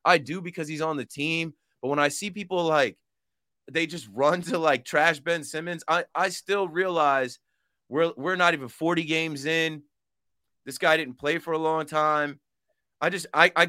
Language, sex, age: English, male, 30-49